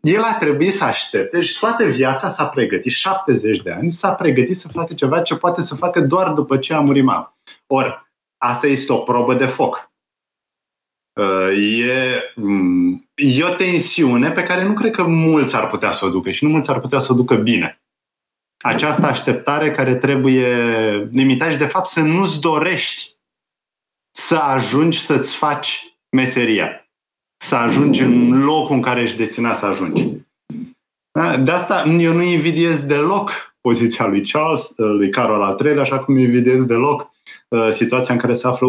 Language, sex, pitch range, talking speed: Romanian, male, 125-155 Hz, 165 wpm